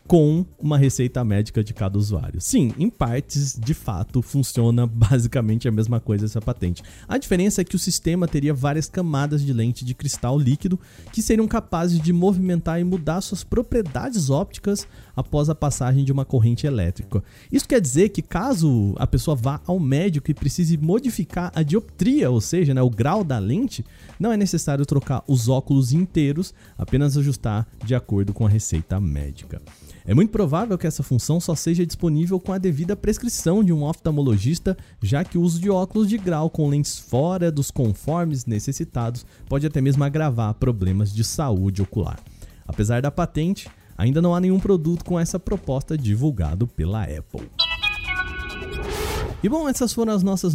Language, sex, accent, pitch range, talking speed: Portuguese, male, Brazilian, 120-175 Hz, 170 wpm